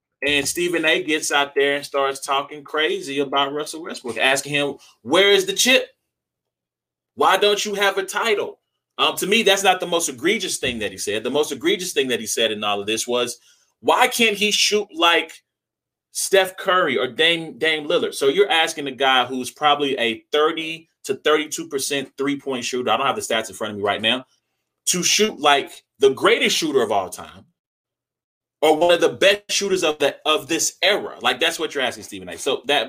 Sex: male